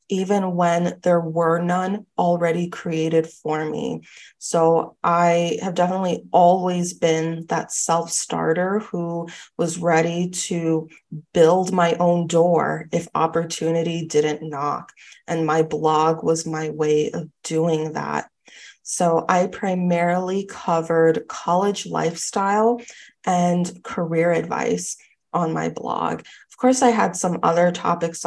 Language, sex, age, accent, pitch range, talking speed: English, female, 20-39, American, 165-190 Hz, 125 wpm